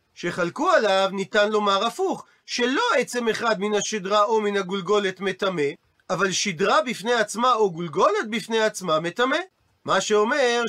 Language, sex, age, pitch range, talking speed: Hebrew, male, 40-59, 200-250 Hz, 140 wpm